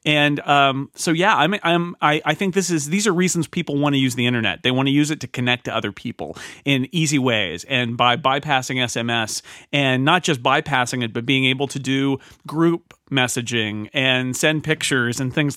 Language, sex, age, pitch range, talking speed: English, male, 30-49, 120-155 Hz, 210 wpm